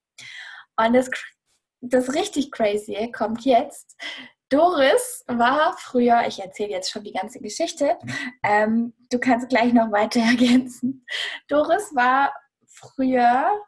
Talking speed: 120 wpm